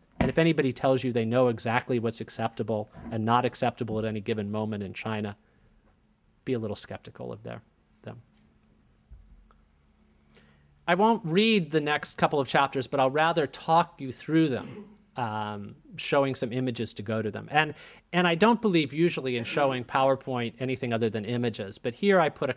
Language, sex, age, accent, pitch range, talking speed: English, male, 40-59, American, 110-155 Hz, 175 wpm